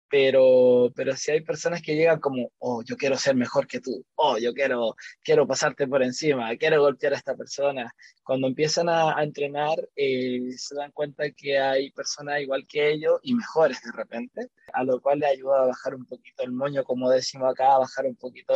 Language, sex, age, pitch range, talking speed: Spanish, male, 20-39, 130-155 Hz, 205 wpm